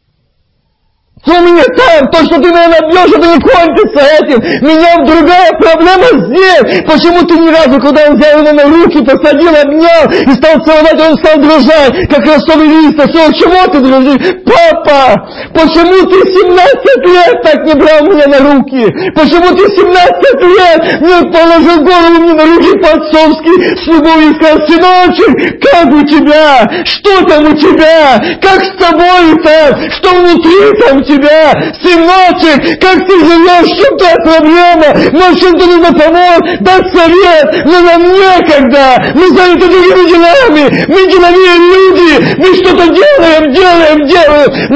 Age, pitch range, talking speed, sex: 50-69, 300-355 Hz, 155 wpm, male